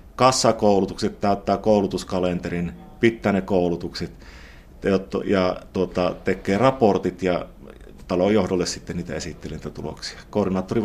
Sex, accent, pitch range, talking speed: male, native, 85-105 Hz, 95 wpm